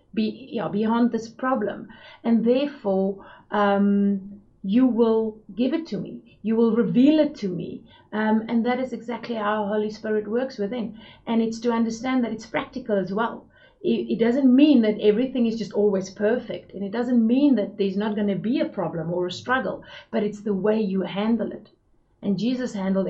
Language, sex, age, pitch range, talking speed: English, female, 30-49, 195-230 Hz, 195 wpm